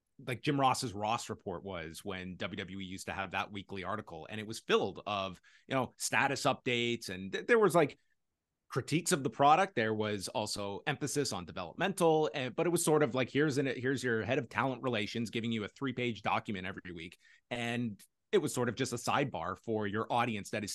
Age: 30-49